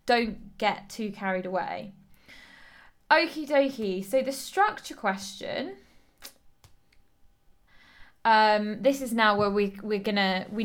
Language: English